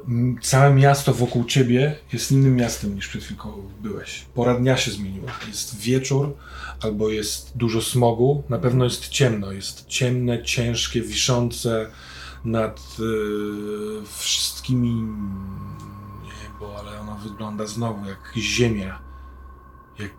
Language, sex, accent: Polish, male, native